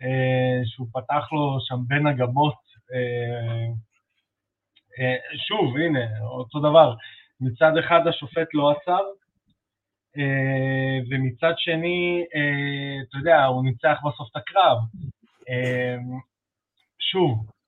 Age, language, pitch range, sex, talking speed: 20-39, Hebrew, 120-155 Hz, male, 85 wpm